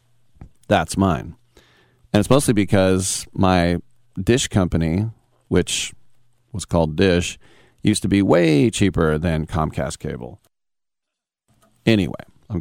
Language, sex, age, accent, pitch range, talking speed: English, male, 40-59, American, 95-120 Hz, 110 wpm